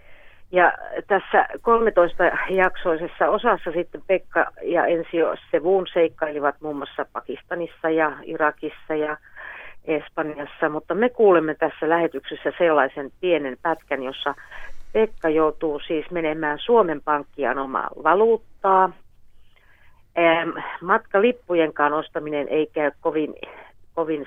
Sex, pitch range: female, 150-185 Hz